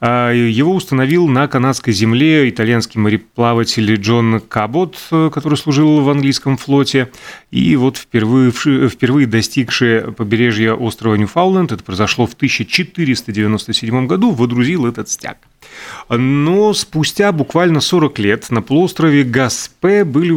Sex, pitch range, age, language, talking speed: male, 110-150 Hz, 30-49, Russian, 115 wpm